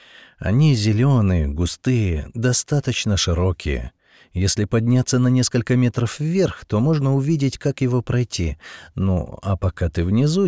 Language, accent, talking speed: Russian, native, 125 wpm